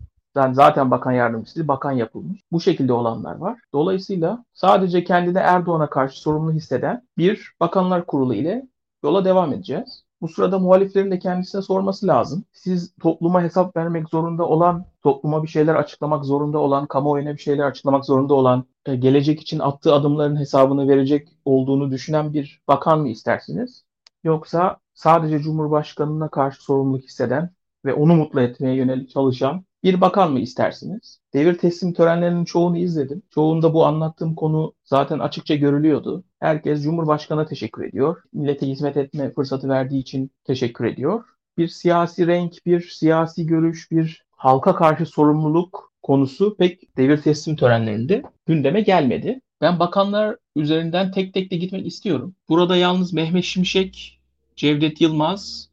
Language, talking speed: Turkish, 140 wpm